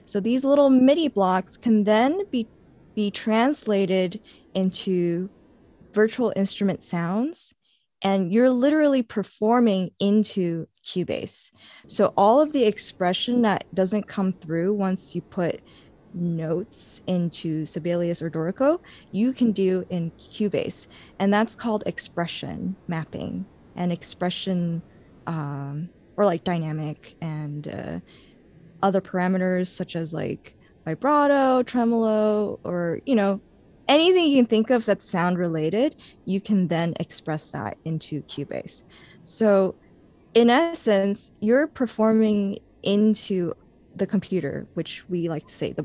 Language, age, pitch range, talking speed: English, 20-39, 175-225 Hz, 120 wpm